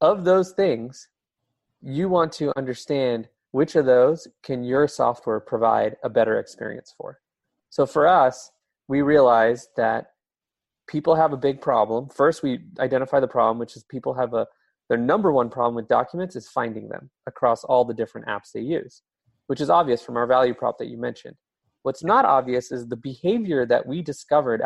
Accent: American